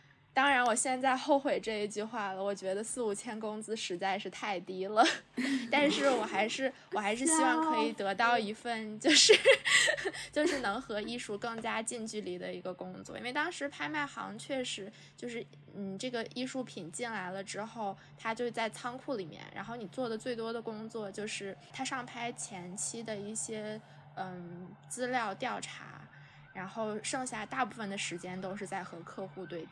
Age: 10-29